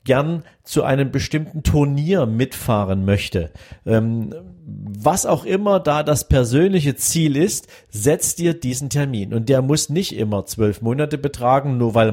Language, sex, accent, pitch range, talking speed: German, male, German, 110-145 Hz, 150 wpm